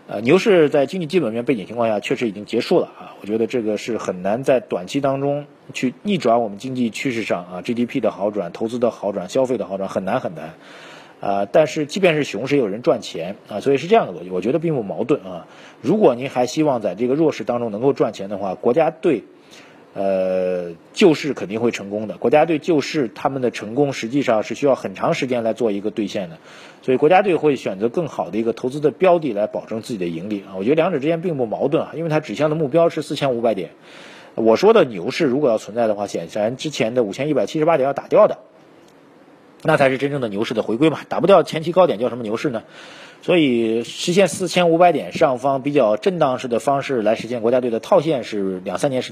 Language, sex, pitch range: Chinese, male, 110-145 Hz